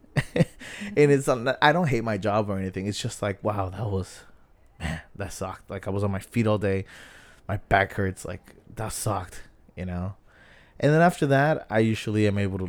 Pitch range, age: 95-120 Hz, 20-39